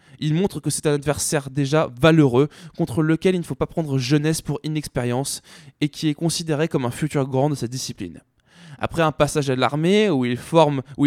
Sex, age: male, 20-39